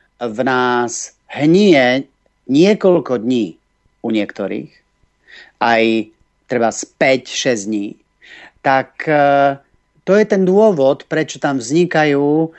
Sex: male